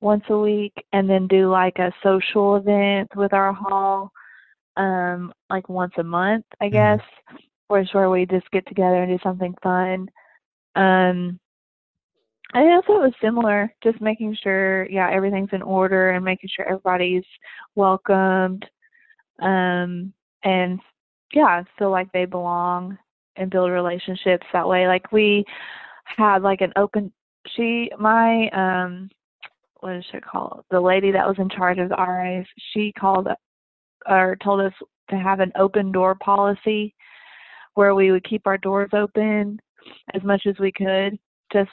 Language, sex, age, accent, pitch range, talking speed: English, female, 20-39, American, 185-205 Hz, 155 wpm